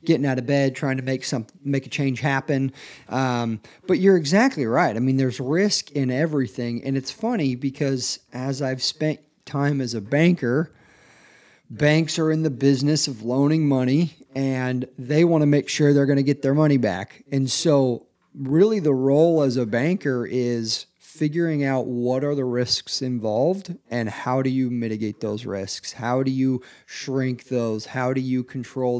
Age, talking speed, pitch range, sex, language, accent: 40-59, 180 wpm, 125-150 Hz, male, English, American